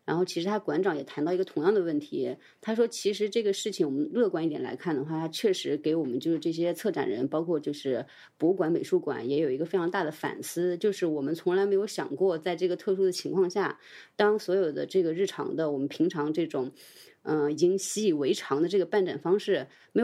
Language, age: Chinese, 30-49